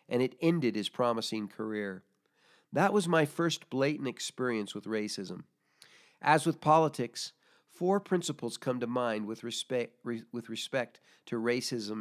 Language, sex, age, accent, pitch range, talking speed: English, male, 50-69, American, 120-160 Hz, 140 wpm